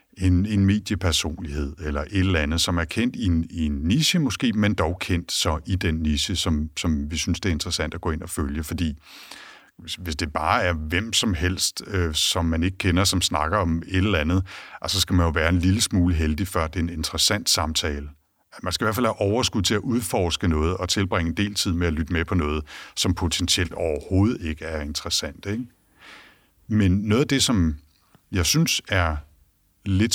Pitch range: 80-95 Hz